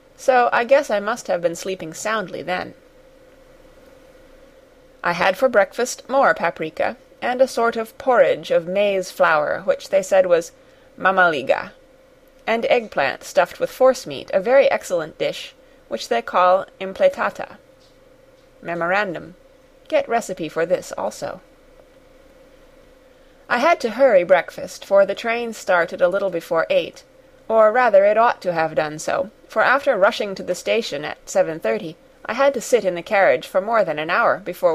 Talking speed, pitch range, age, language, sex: 155 wpm, 185-270 Hz, 30-49, English, female